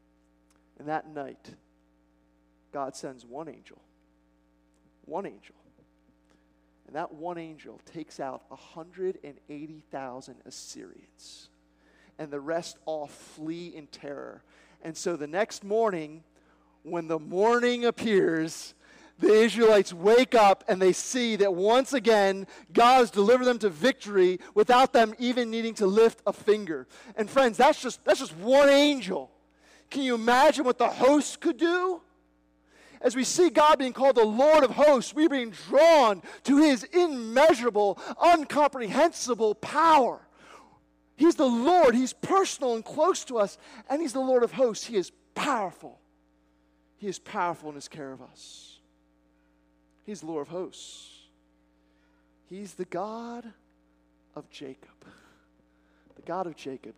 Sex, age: male, 40-59